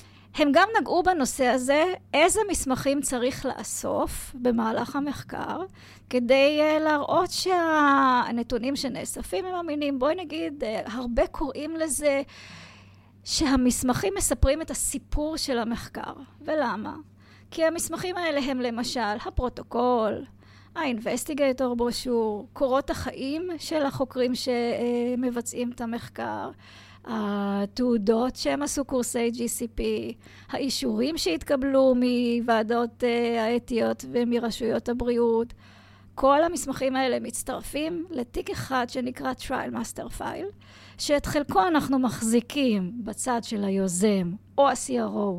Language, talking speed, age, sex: Hebrew, 100 wpm, 30-49, female